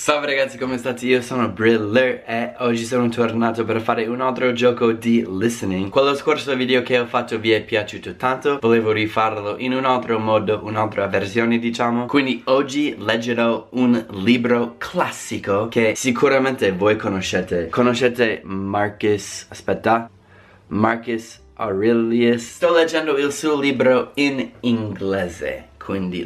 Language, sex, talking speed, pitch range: Italian, male, 135 wpm, 105-125 Hz